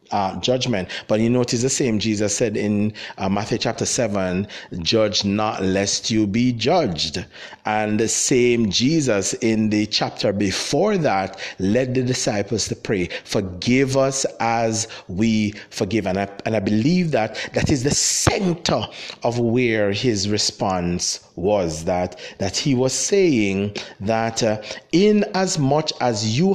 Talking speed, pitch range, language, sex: 150 wpm, 105-150 Hz, English, male